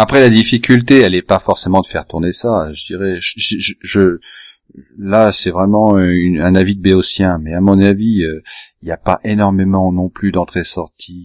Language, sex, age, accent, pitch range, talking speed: French, male, 40-59, French, 80-105 Hz, 170 wpm